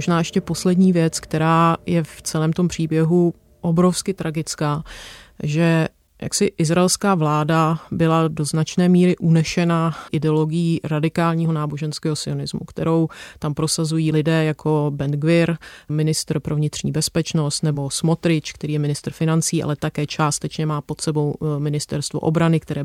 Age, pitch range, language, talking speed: 30-49, 150-165 Hz, Czech, 135 wpm